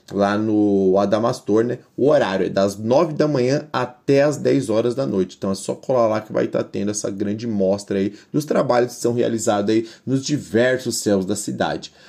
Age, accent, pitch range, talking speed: 20-39, Brazilian, 100-125 Hz, 210 wpm